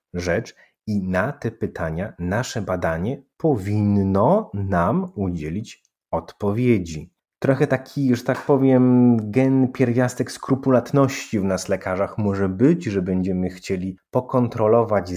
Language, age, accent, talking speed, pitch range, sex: Polish, 30-49, native, 110 wpm, 90-120 Hz, male